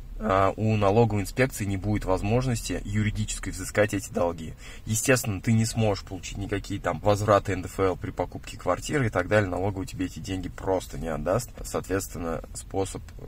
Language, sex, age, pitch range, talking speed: Russian, male, 20-39, 95-115 Hz, 155 wpm